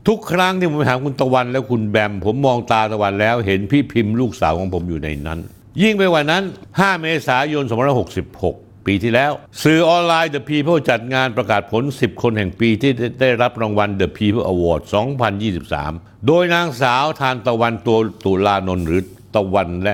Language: Thai